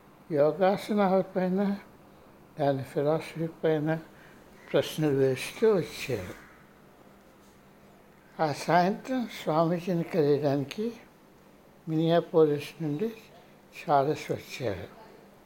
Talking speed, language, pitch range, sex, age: 60 wpm, Telugu, 140-190 Hz, male, 60-79